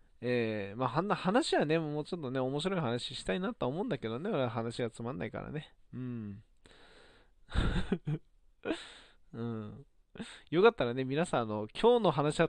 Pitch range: 120-160 Hz